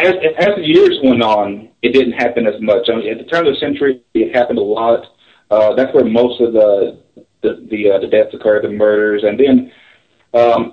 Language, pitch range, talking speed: English, 100-120 Hz, 225 wpm